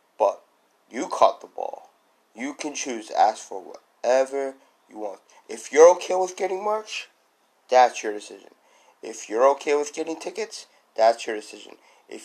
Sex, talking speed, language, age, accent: male, 160 wpm, English, 30-49, American